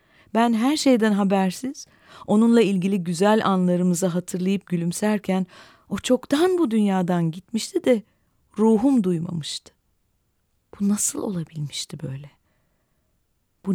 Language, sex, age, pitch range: Turkish, female, 40-59, 145-195 Hz